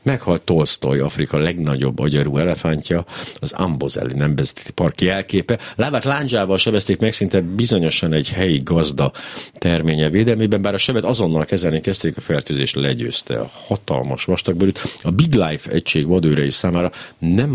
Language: Hungarian